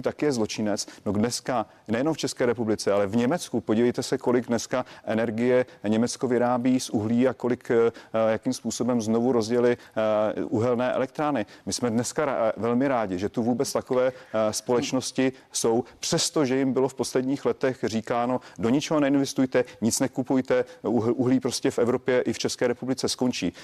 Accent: native